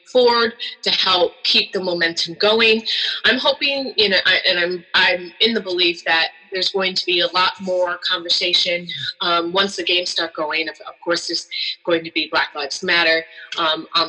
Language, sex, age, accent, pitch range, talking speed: English, female, 20-39, American, 165-200 Hz, 185 wpm